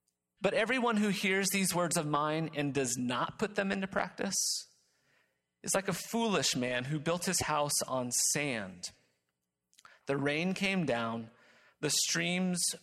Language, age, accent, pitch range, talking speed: English, 30-49, American, 120-185 Hz, 150 wpm